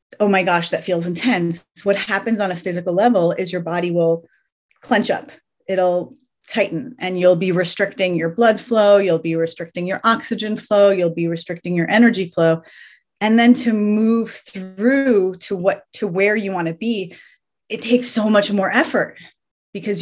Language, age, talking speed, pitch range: English, 30-49, 180 wpm, 170-210 Hz